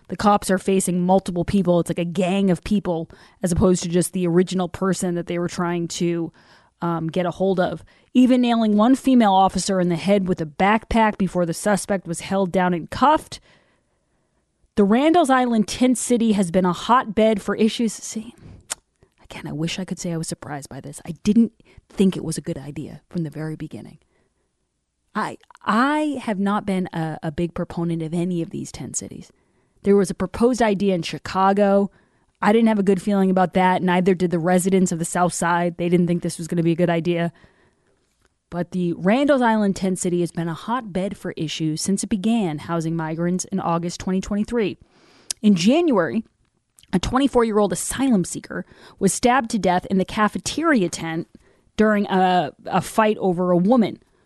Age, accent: 30-49, American